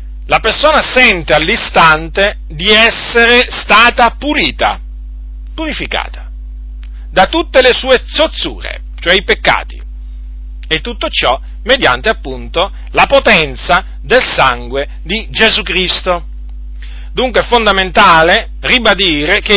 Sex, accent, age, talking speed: male, native, 40-59, 105 wpm